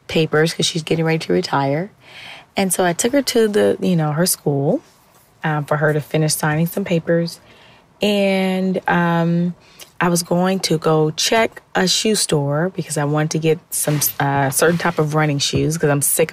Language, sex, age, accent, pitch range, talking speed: English, female, 30-49, American, 150-190 Hz, 190 wpm